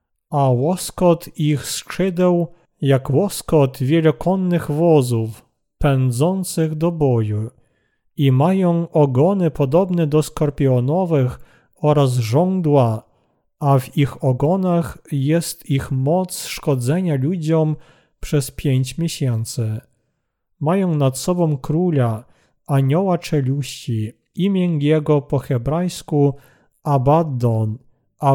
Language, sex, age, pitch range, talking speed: Polish, male, 40-59, 135-170 Hz, 90 wpm